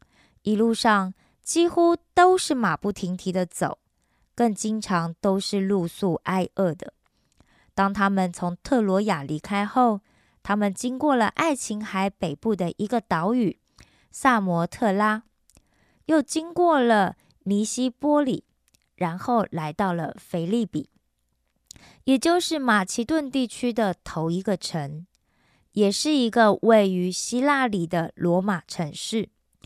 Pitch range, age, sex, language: 180-240 Hz, 20-39, female, Korean